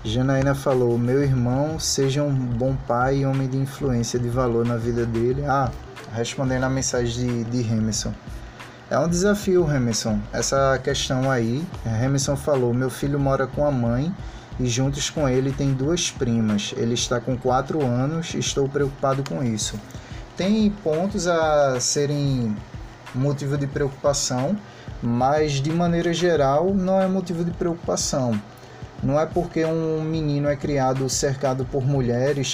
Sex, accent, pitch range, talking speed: male, Brazilian, 120-145 Hz, 150 wpm